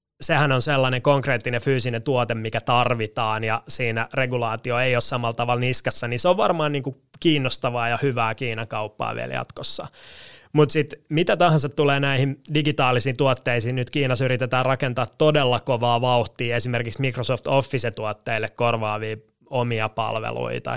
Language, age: Finnish, 20-39